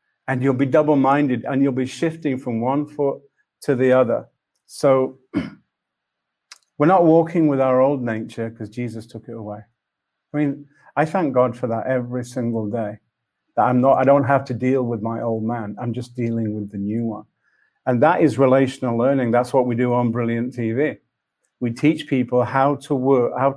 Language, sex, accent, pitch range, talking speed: English, male, British, 115-140 Hz, 190 wpm